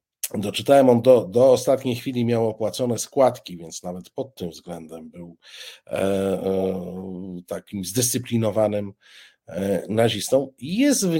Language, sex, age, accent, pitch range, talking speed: Polish, male, 50-69, native, 100-120 Hz, 105 wpm